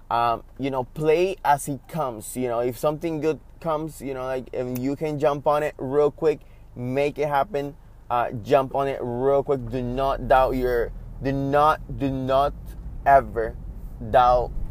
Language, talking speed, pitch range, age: English, 175 wpm, 115-140 Hz, 20-39